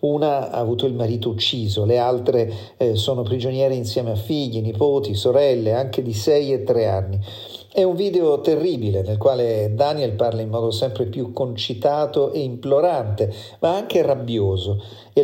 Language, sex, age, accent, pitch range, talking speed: Italian, male, 40-59, native, 110-155 Hz, 160 wpm